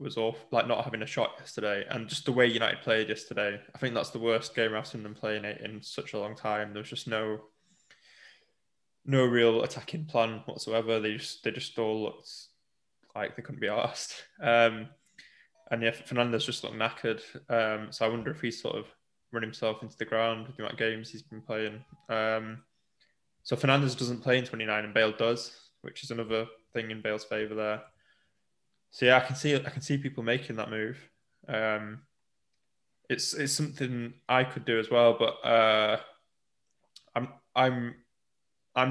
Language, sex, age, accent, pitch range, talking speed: English, male, 10-29, British, 110-130 Hz, 190 wpm